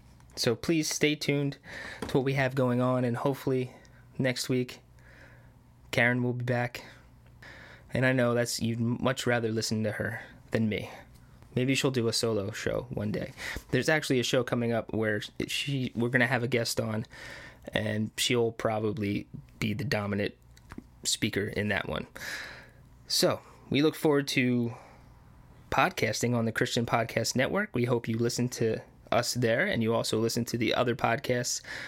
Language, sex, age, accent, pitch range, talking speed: English, male, 20-39, American, 115-130 Hz, 170 wpm